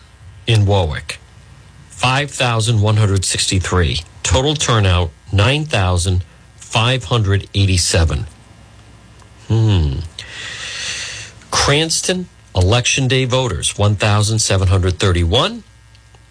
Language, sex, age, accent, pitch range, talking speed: English, male, 50-69, American, 95-120 Hz, 45 wpm